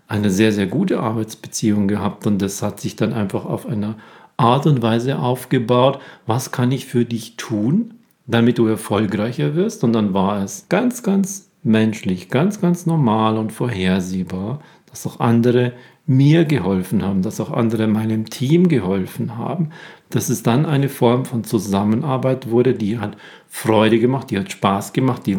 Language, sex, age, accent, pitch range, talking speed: German, male, 40-59, German, 110-140 Hz, 165 wpm